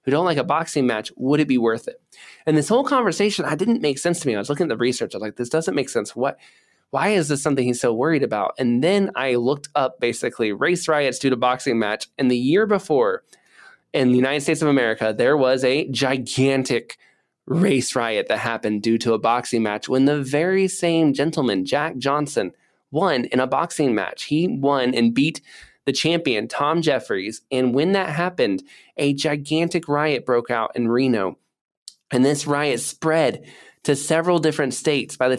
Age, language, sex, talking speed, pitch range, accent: 20-39, English, male, 200 wpm, 125-165 Hz, American